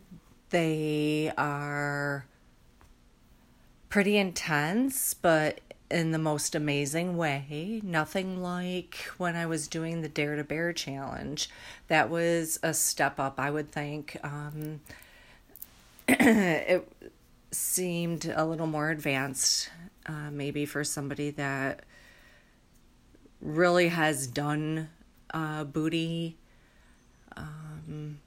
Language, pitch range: English, 140-160 Hz